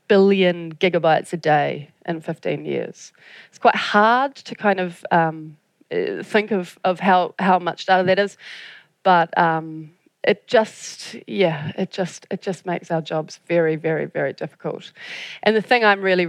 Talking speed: 160 wpm